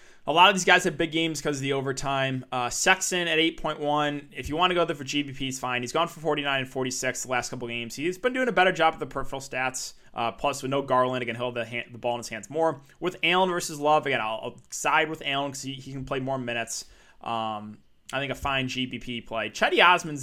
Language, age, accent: English, 20-39, American